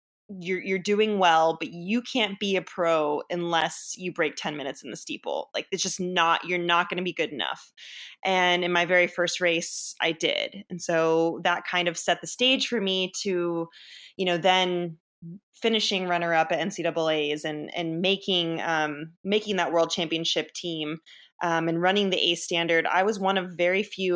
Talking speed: 190 wpm